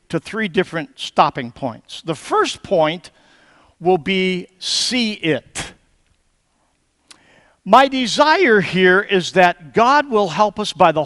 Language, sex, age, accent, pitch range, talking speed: English, male, 50-69, American, 145-210 Hz, 125 wpm